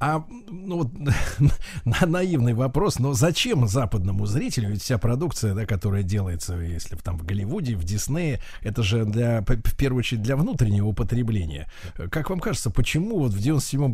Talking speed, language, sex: 155 wpm, Russian, male